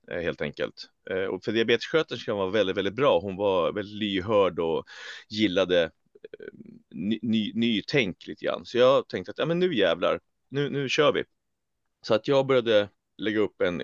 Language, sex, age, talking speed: Swedish, male, 30-49, 165 wpm